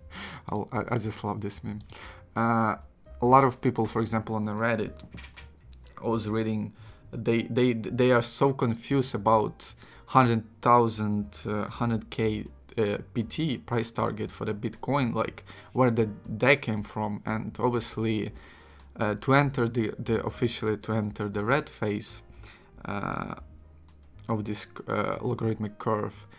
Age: 20-39